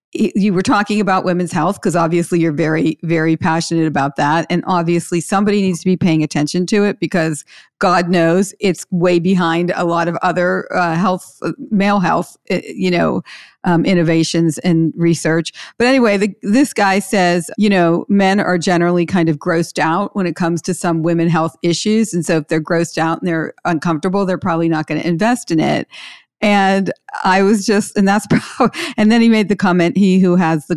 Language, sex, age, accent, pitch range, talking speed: English, female, 50-69, American, 170-210 Hz, 195 wpm